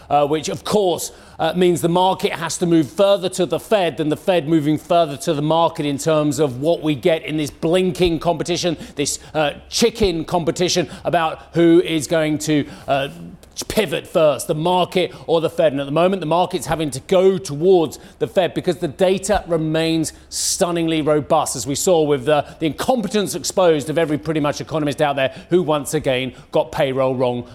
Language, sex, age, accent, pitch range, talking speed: English, male, 30-49, British, 155-190 Hz, 195 wpm